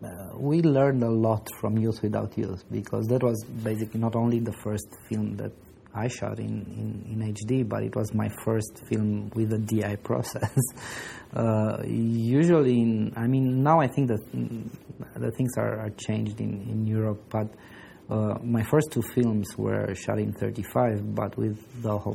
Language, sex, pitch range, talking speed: English, male, 105-120 Hz, 170 wpm